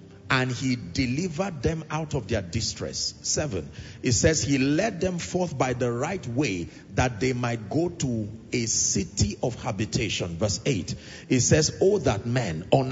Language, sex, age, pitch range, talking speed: English, male, 40-59, 115-160 Hz, 165 wpm